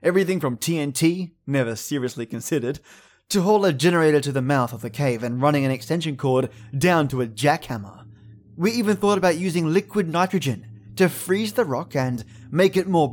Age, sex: 20-39, male